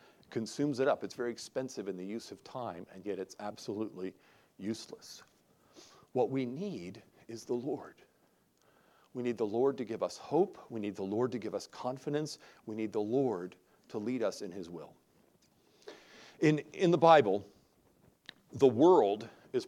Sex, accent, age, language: male, American, 50-69, English